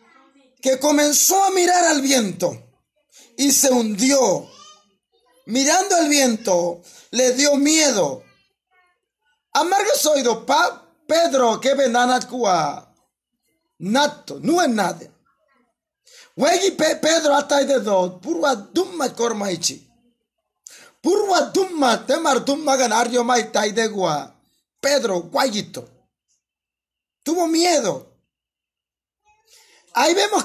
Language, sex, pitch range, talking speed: Spanish, male, 245-350 Hz, 95 wpm